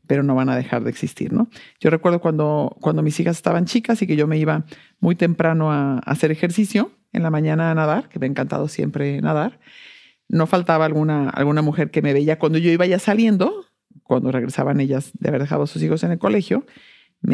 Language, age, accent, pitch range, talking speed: English, 50-69, Mexican, 150-210 Hz, 220 wpm